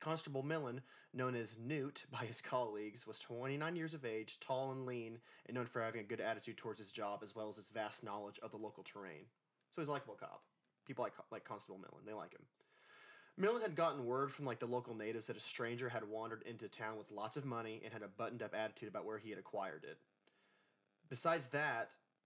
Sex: male